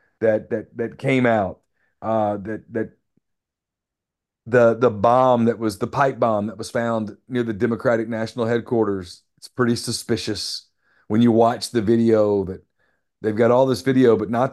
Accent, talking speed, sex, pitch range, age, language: American, 165 wpm, male, 115-140 Hz, 40-59, English